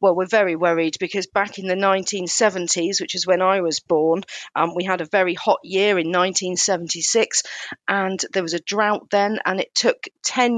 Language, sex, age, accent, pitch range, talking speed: English, female, 40-59, British, 170-210 Hz, 195 wpm